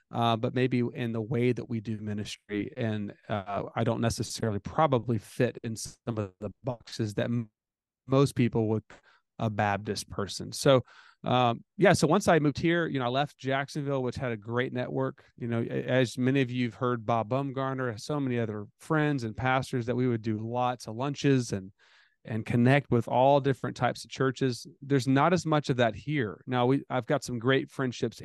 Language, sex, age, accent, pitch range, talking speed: English, male, 30-49, American, 115-135 Hz, 200 wpm